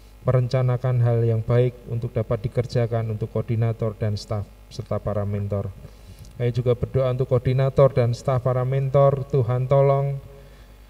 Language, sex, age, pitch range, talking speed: Indonesian, male, 20-39, 115-135 Hz, 140 wpm